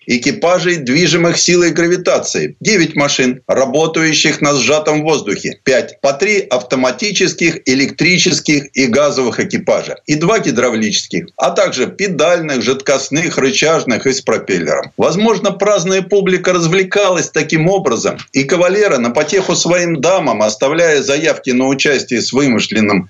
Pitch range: 130-180 Hz